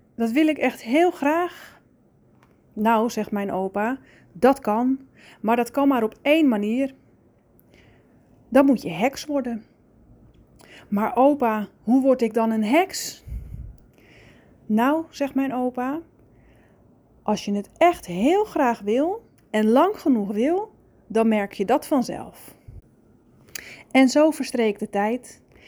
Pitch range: 220-280 Hz